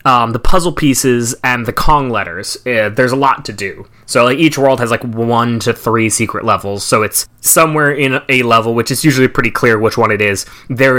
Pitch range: 110-140 Hz